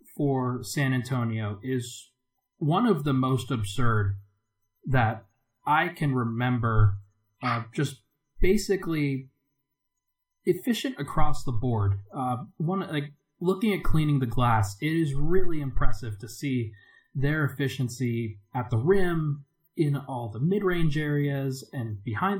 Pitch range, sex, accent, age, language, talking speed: 120-150 Hz, male, American, 30-49, English, 120 wpm